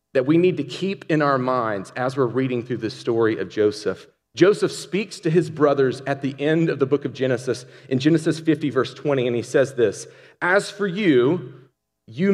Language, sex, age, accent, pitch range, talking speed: English, male, 40-59, American, 130-175 Hz, 205 wpm